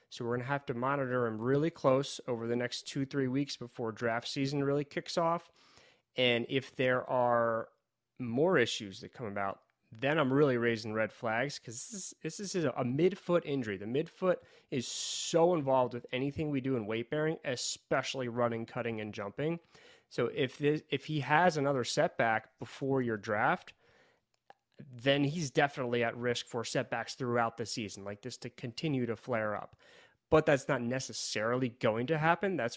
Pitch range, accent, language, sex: 115-140 Hz, American, English, male